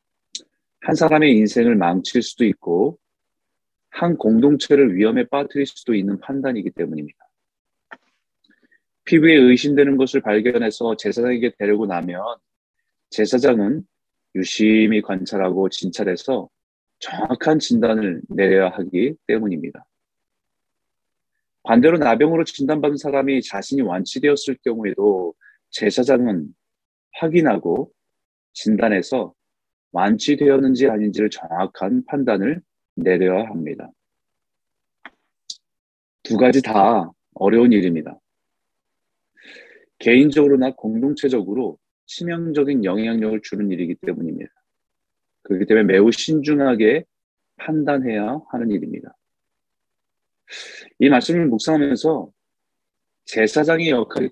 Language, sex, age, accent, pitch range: Korean, male, 40-59, native, 105-145 Hz